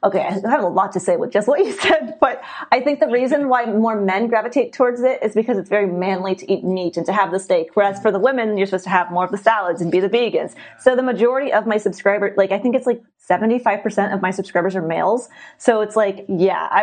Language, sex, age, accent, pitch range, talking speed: English, female, 30-49, American, 205-270 Hz, 260 wpm